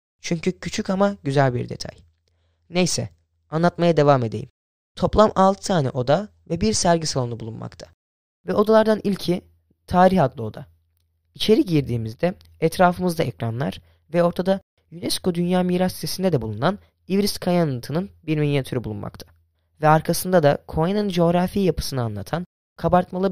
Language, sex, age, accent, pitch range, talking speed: Turkish, female, 10-29, native, 115-180 Hz, 130 wpm